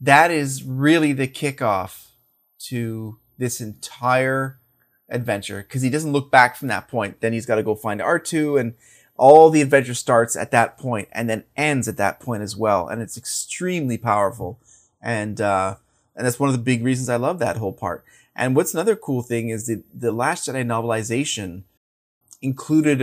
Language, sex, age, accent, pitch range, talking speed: English, male, 30-49, American, 115-140 Hz, 180 wpm